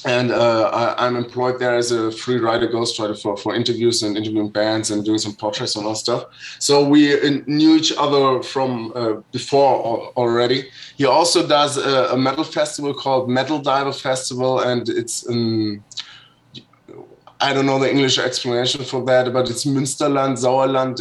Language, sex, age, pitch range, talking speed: English, male, 20-39, 120-135 Hz, 170 wpm